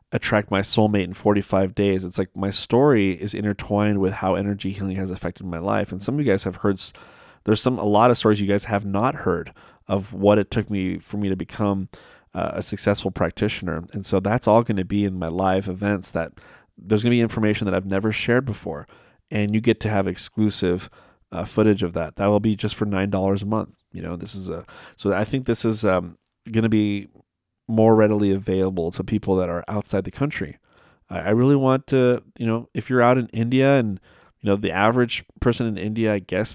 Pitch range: 100-115 Hz